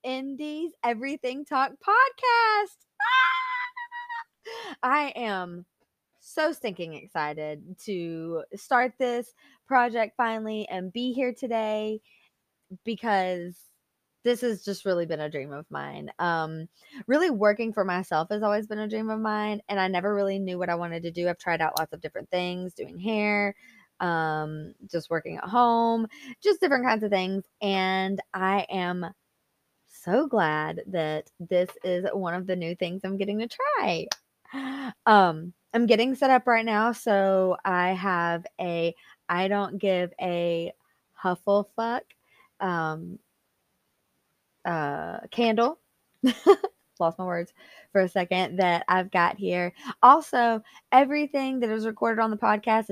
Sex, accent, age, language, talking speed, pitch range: female, American, 20-39, English, 140 wpm, 180-245 Hz